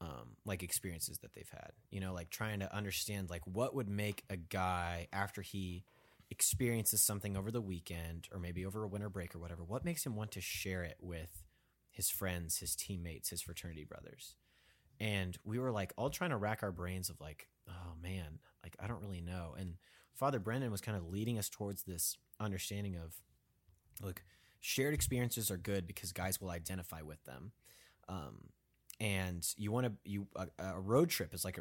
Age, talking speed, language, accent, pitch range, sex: 30-49, 195 wpm, English, American, 90-110 Hz, male